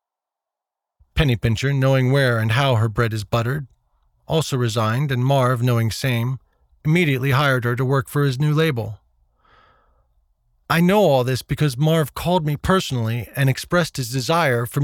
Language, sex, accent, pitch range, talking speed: English, male, American, 115-145 Hz, 160 wpm